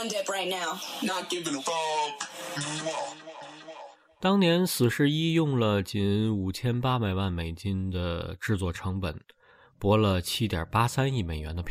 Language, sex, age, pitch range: Chinese, male, 20-39, 90-125 Hz